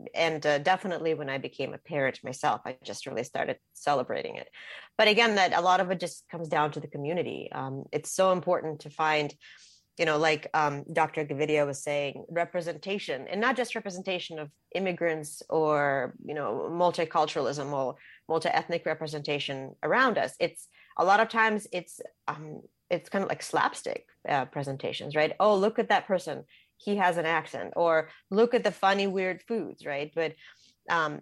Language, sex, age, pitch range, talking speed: English, female, 30-49, 145-185 Hz, 175 wpm